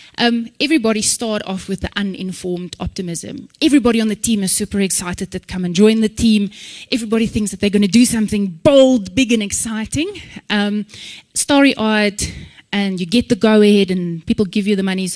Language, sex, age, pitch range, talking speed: English, female, 20-39, 185-245 Hz, 180 wpm